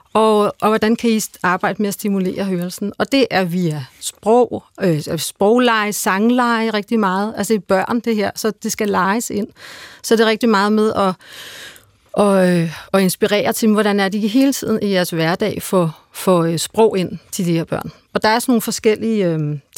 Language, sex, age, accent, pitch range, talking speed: Danish, female, 40-59, native, 180-220 Hz, 195 wpm